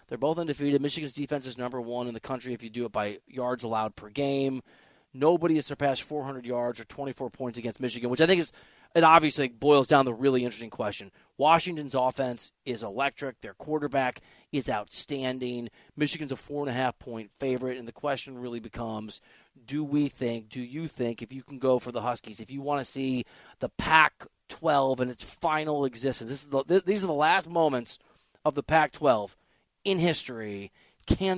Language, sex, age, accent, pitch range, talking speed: English, male, 30-49, American, 125-160 Hz, 185 wpm